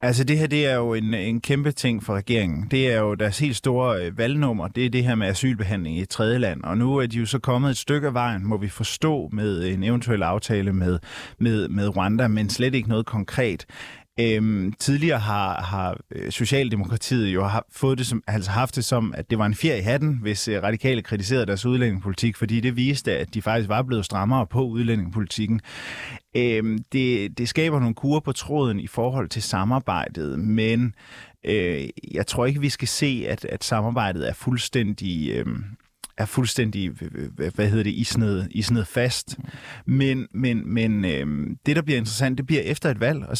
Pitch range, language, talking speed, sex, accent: 105-130 Hz, Danish, 190 wpm, male, native